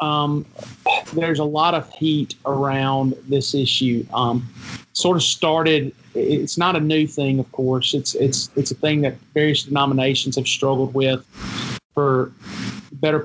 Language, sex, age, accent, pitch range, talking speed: English, male, 40-59, American, 135-155 Hz, 155 wpm